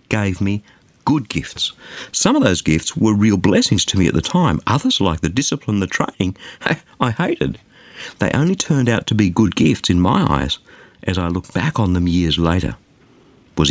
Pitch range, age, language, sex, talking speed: 90-135 Hz, 50-69, English, male, 195 wpm